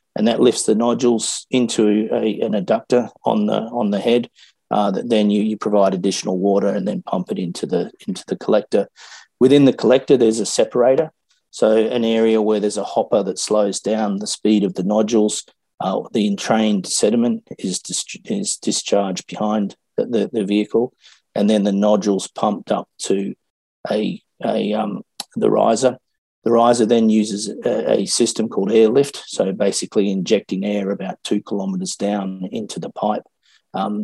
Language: English